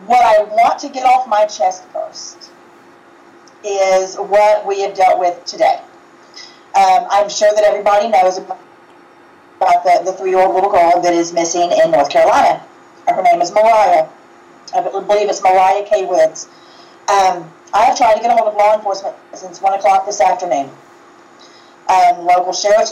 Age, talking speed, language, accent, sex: 30-49, 160 wpm, English, American, female